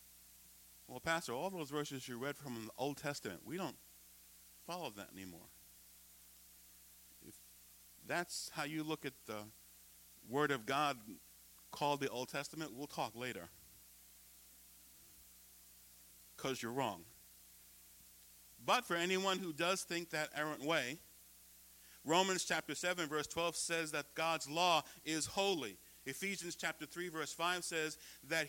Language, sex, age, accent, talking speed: English, male, 50-69, American, 135 wpm